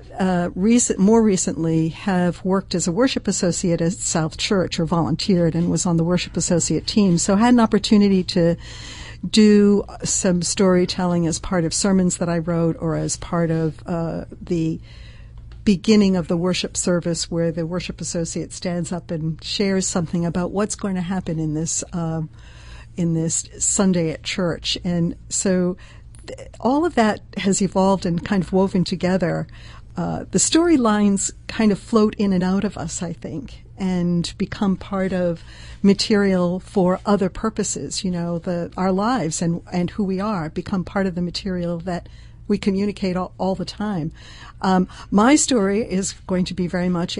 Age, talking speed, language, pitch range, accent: 60-79, 170 wpm, English, 170-205 Hz, American